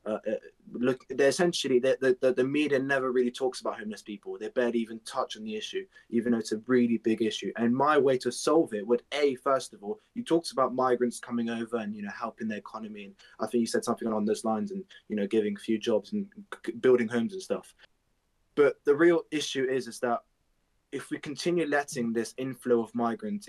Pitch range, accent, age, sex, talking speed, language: 115-135 Hz, British, 20-39, male, 220 wpm, English